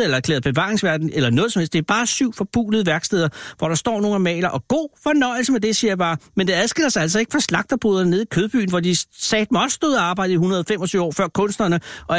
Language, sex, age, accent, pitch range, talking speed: Danish, male, 60-79, native, 170-220 Hz, 245 wpm